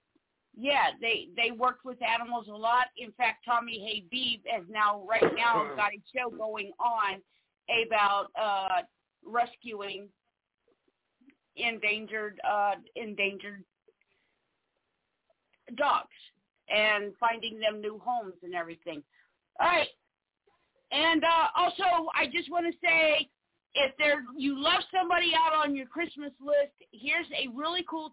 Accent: American